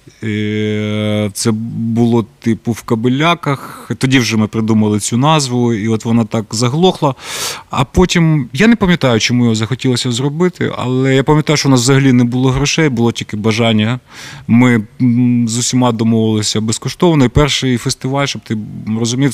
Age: 30-49